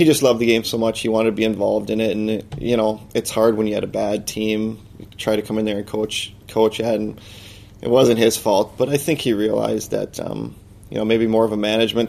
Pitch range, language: 105-115 Hz, English